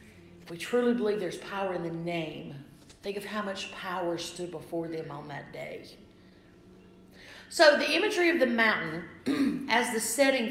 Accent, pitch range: American, 185-240 Hz